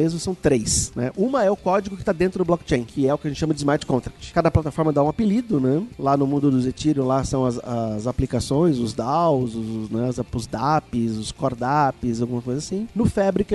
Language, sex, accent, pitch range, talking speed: Portuguese, male, Brazilian, 130-165 Hz, 230 wpm